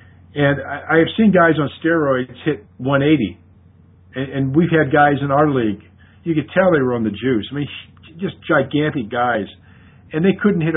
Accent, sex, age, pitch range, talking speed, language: American, male, 50-69, 105-150 Hz, 185 wpm, English